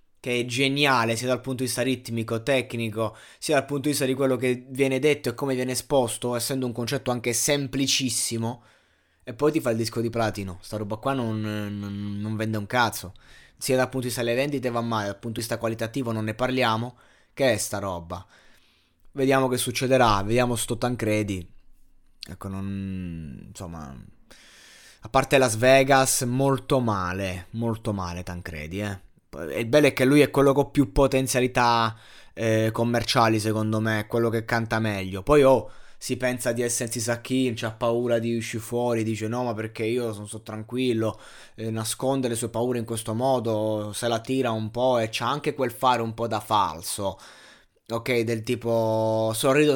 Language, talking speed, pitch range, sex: Italian, 185 wpm, 110-125 Hz, male